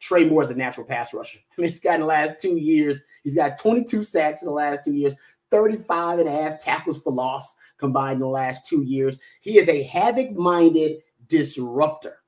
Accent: American